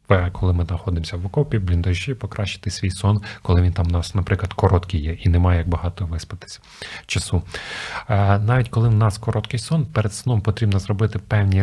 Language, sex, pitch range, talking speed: Ukrainian, male, 100-130 Hz, 180 wpm